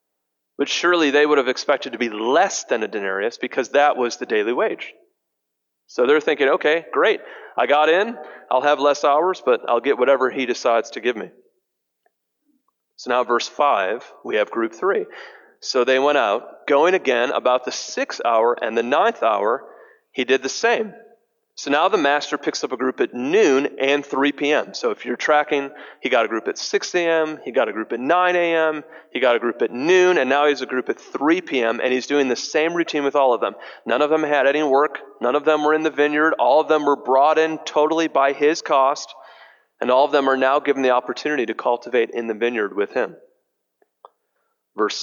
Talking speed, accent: 215 wpm, American